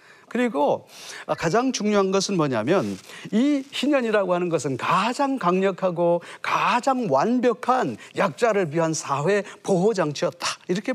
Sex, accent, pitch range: male, native, 155-235 Hz